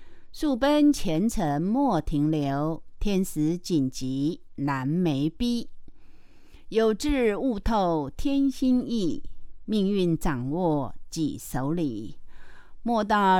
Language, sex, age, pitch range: Chinese, female, 50-69, 150-225 Hz